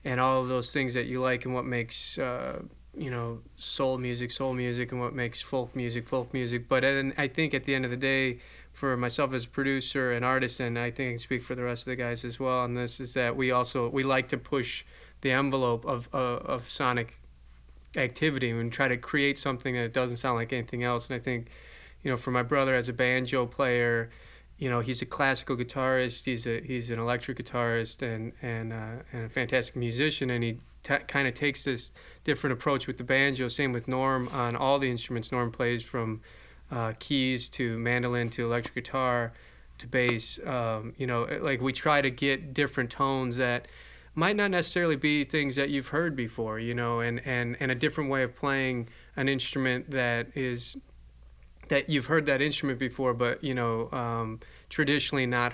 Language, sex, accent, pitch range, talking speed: English, male, American, 120-135 Hz, 205 wpm